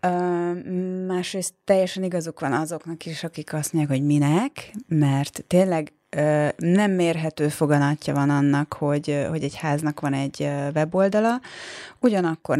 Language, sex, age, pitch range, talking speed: Hungarian, female, 30-49, 150-185 Hz, 125 wpm